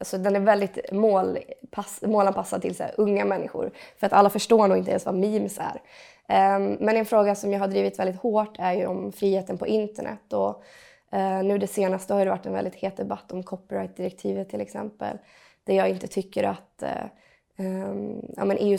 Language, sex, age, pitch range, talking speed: Swedish, female, 20-39, 185-215 Hz, 205 wpm